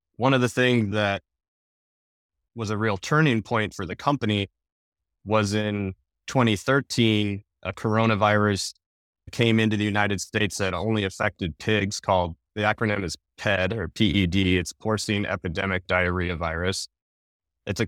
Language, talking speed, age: English, 140 wpm, 20-39